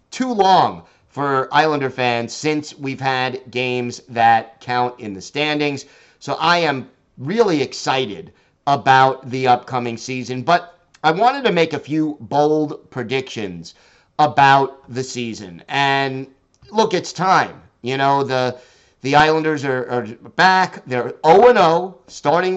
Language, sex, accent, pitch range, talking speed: English, male, American, 125-160 Hz, 135 wpm